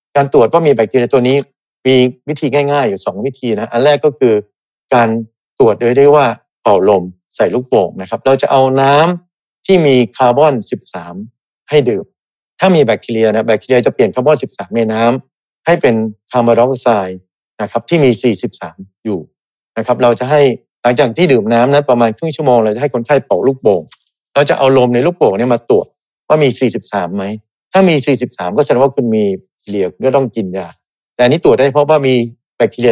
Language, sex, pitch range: Thai, male, 115-145 Hz